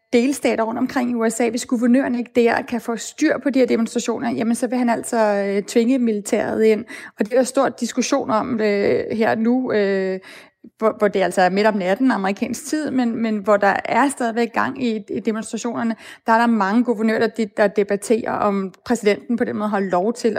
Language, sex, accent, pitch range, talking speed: Danish, female, native, 215-255 Hz, 195 wpm